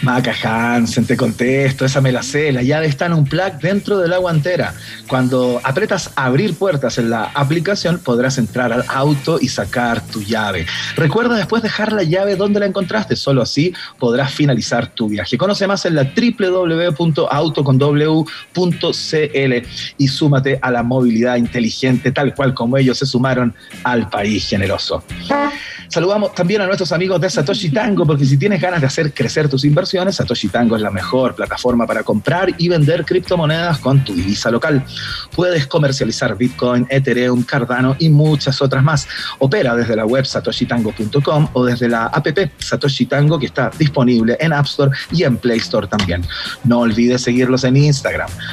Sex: male